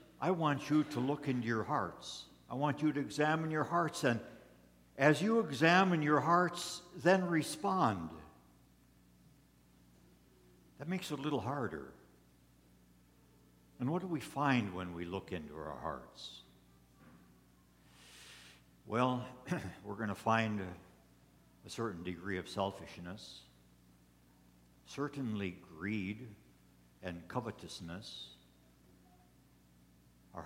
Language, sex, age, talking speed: English, male, 60-79, 110 wpm